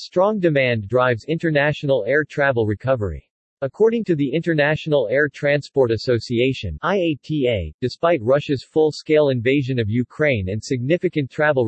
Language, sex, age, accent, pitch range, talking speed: English, male, 40-59, American, 120-150 Hz, 120 wpm